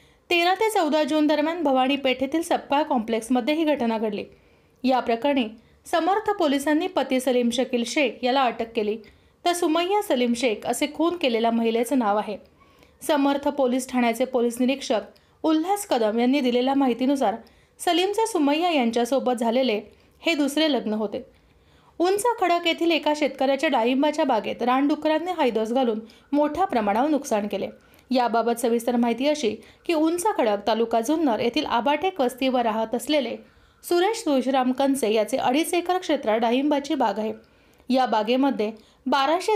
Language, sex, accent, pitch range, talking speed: Marathi, female, native, 235-310 Hz, 100 wpm